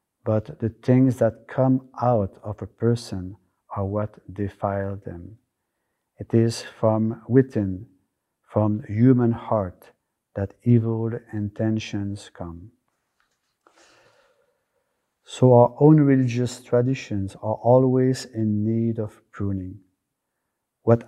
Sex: male